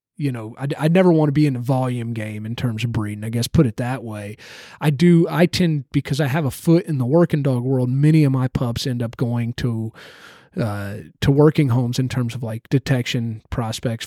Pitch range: 125-150 Hz